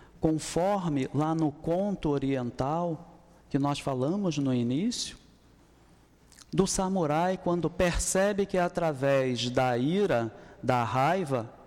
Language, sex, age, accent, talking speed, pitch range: Portuguese, male, 50-69, Brazilian, 105 wpm, 135-185 Hz